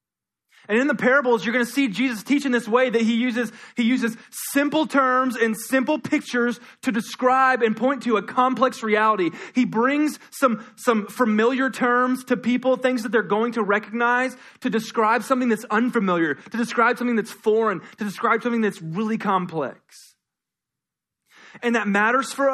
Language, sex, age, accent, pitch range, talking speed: English, male, 20-39, American, 210-255 Hz, 170 wpm